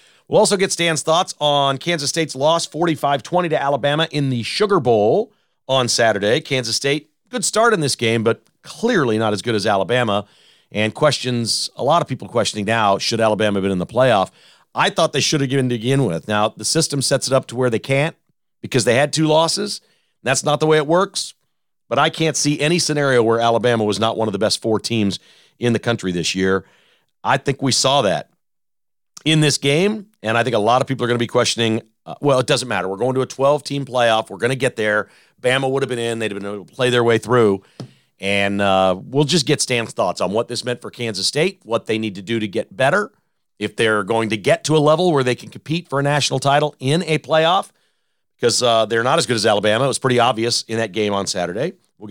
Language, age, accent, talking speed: English, 40-59, American, 235 wpm